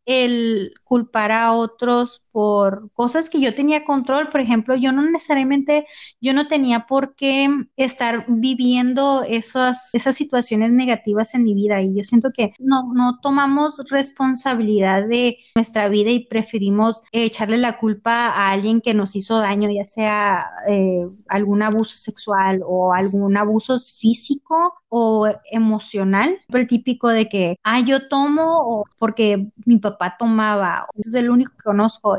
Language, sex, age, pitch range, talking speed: Spanish, female, 20-39, 215-260 Hz, 155 wpm